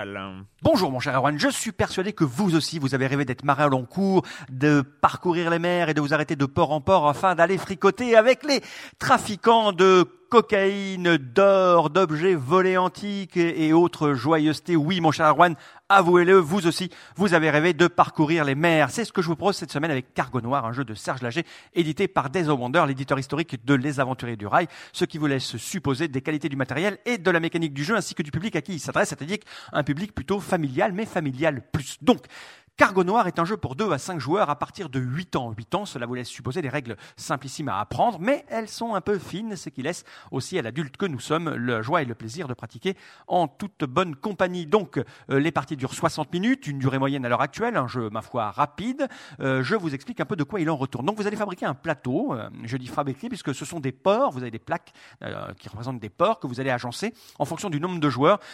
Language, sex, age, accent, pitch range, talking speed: French, male, 40-59, French, 140-185 Hz, 240 wpm